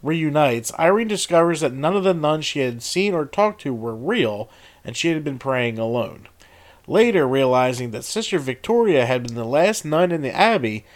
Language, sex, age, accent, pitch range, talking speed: English, male, 40-59, American, 115-155 Hz, 190 wpm